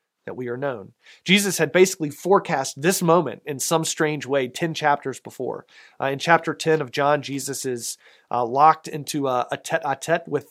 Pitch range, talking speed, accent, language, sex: 130-165 Hz, 195 wpm, American, English, male